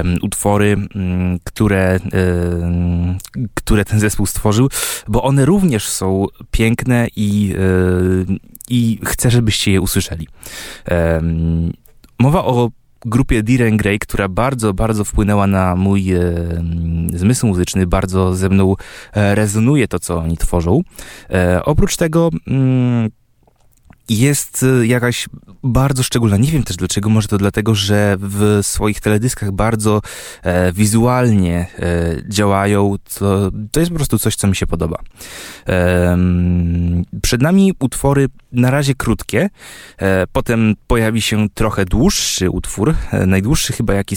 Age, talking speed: 20-39, 110 wpm